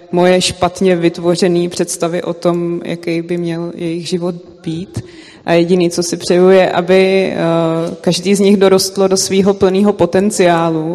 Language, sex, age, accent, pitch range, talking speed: Czech, female, 20-39, native, 165-180 Hz, 150 wpm